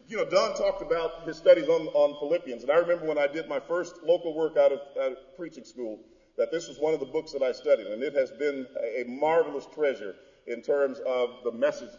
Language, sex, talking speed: English, male, 235 wpm